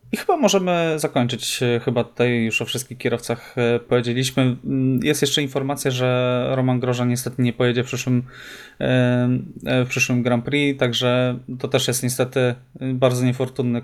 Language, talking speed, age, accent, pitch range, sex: Polish, 140 wpm, 20-39, native, 120-135 Hz, male